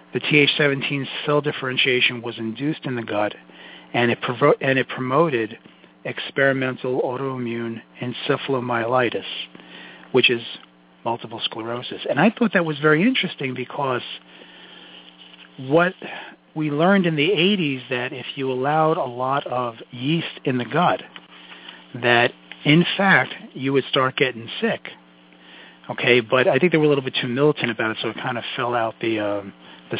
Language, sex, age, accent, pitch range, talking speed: English, male, 40-59, American, 110-145 Hz, 150 wpm